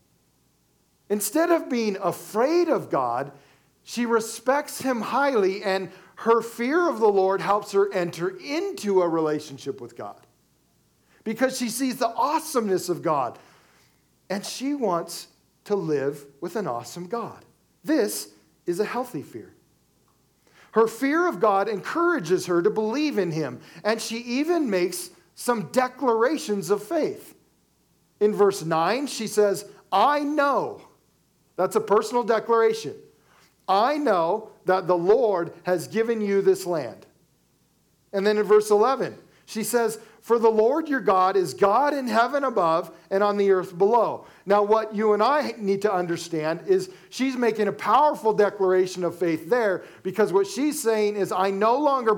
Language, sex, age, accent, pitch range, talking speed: English, male, 40-59, American, 185-240 Hz, 150 wpm